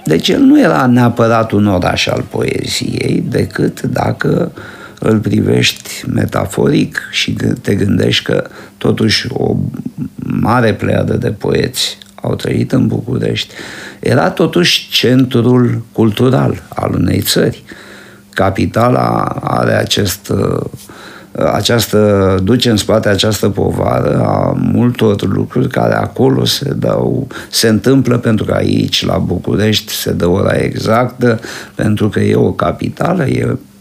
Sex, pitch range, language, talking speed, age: male, 100-125 Hz, Romanian, 120 wpm, 50-69